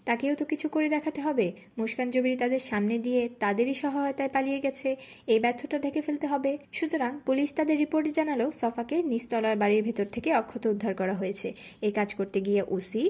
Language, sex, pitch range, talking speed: Bengali, female, 210-280 Hz, 120 wpm